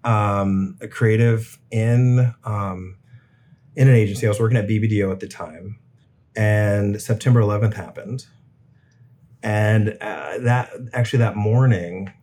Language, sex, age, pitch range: English, male, 30-49, 100-125 Hz